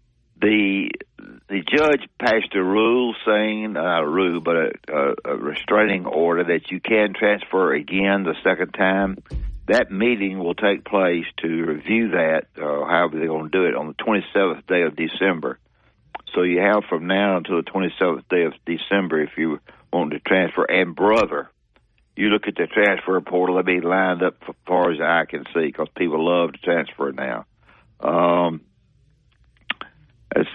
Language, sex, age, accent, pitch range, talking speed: English, male, 60-79, American, 85-100 Hz, 170 wpm